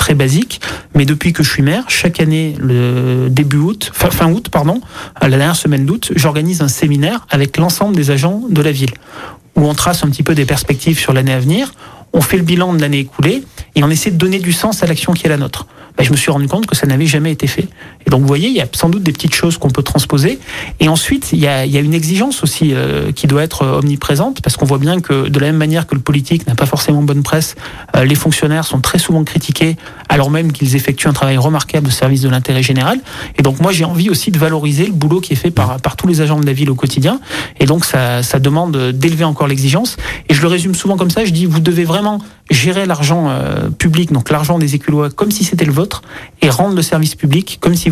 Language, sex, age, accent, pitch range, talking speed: French, male, 30-49, French, 140-170 Hz, 260 wpm